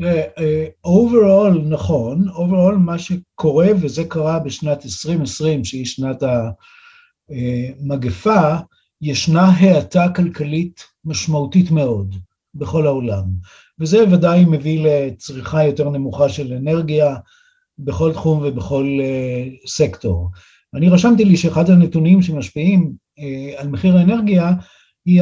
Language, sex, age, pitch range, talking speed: Hebrew, male, 50-69, 140-175 Hz, 100 wpm